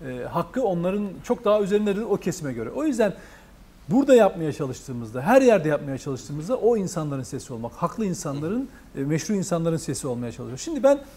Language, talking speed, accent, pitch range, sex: Turkish, 160 wpm, native, 175-250 Hz, male